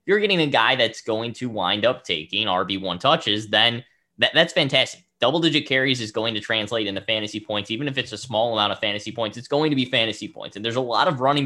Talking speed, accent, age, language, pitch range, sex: 240 wpm, American, 10-29, English, 105-145 Hz, male